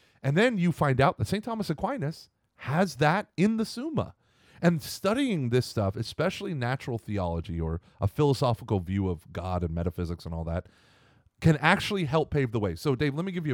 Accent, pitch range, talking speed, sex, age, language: American, 100-140 Hz, 195 wpm, male, 30-49, English